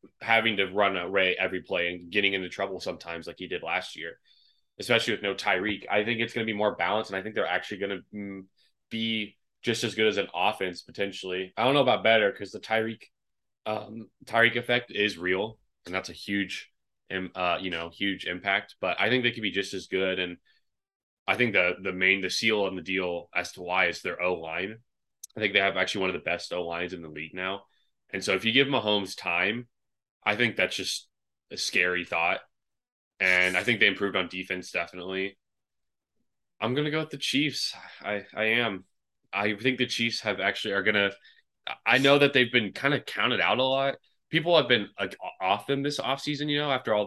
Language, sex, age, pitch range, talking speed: English, male, 20-39, 95-115 Hz, 220 wpm